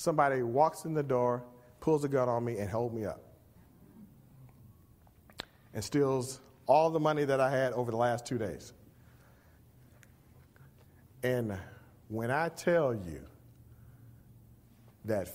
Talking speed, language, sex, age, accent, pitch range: 130 wpm, English, male, 40-59, American, 115-150 Hz